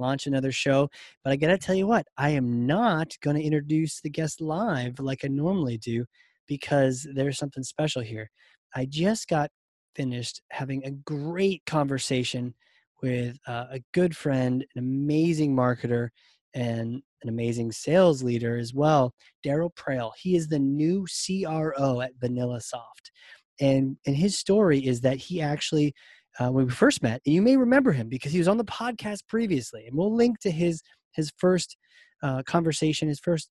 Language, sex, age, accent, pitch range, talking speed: English, male, 30-49, American, 130-170 Hz, 175 wpm